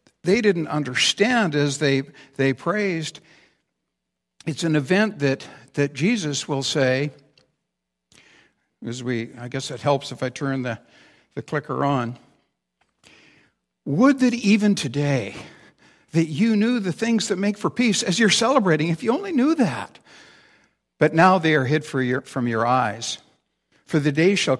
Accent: American